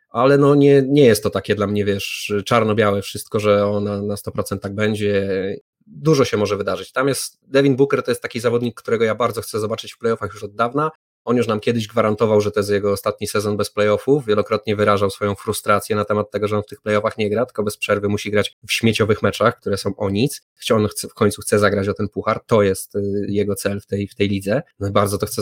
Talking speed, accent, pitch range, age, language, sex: 240 wpm, native, 100-120 Hz, 20-39, Polish, male